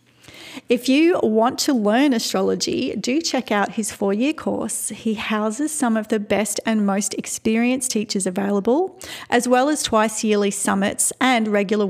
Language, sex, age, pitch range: English, female, 40-59, 210-260 Hz